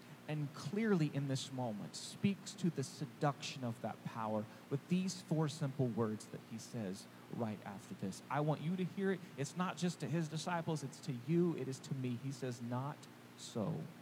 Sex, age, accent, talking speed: male, 40-59, American, 195 wpm